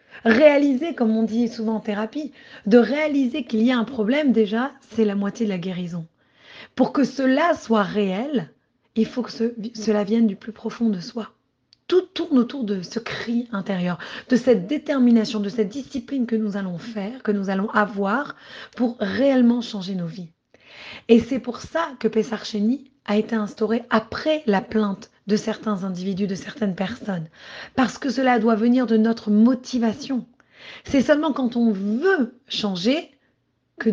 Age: 30-49